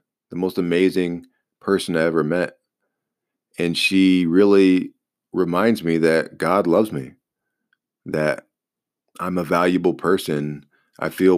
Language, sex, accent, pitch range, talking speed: English, male, American, 85-95 Hz, 120 wpm